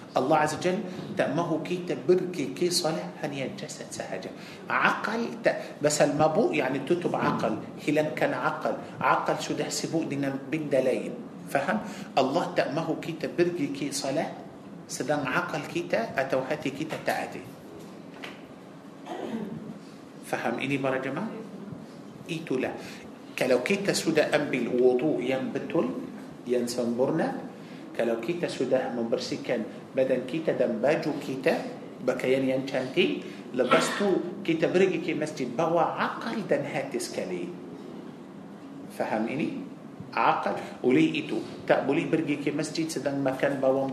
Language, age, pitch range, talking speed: Malay, 50-69, 140-170 Hz, 120 wpm